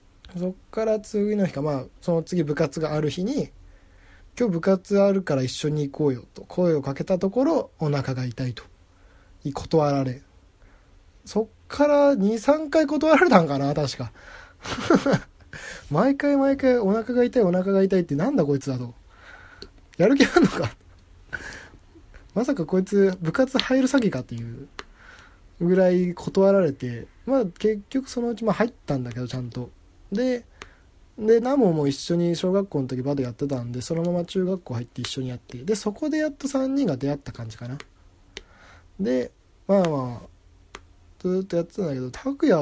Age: 20-39